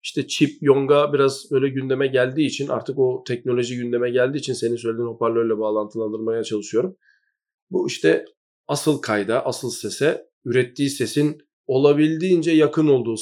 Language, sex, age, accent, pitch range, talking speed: Turkish, male, 40-59, native, 115-145 Hz, 135 wpm